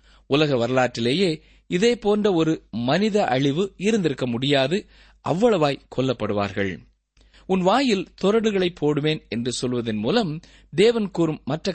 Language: Tamil